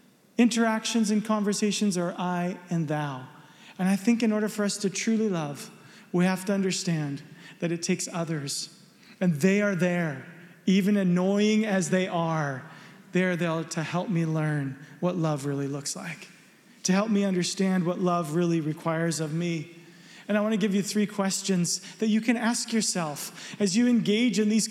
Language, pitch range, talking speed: English, 175-215 Hz, 180 wpm